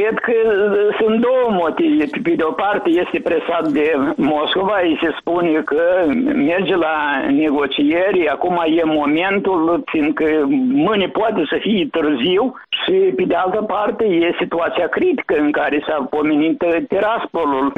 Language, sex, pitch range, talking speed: Romanian, male, 150-220 Hz, 140 wpm